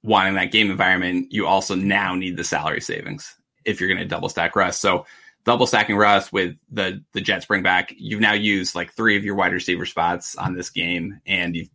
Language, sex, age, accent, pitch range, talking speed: English, male, 20-39, American, 90-100 Hz, 220 wpm